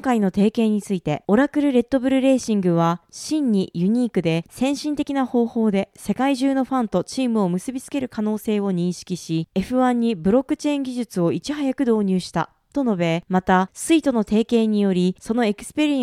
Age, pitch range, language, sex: 20-39, 185-265 Hz, Japanese, female